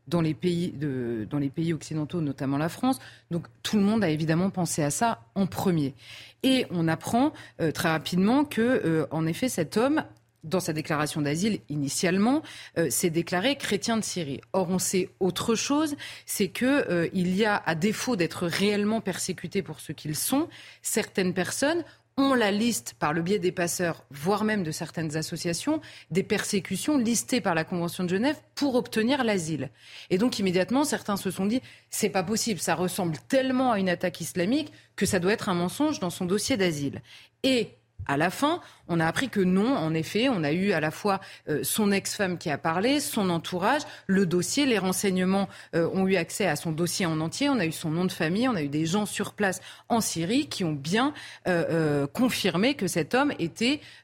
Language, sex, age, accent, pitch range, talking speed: French, female, 30-49, French, 165-220 Hz, 200 wpm